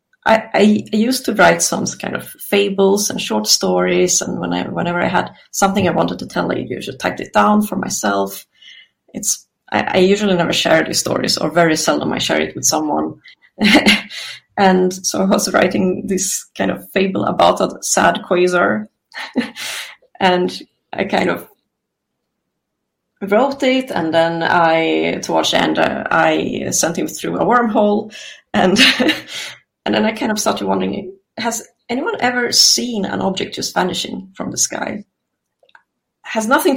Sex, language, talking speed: female, English, 160 wpm